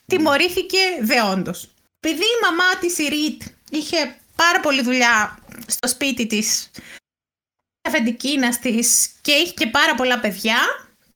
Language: Greek